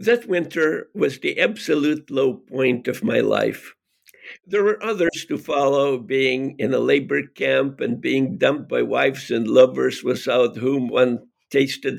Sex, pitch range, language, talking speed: male, 135-175 Hz, English, 155 wpm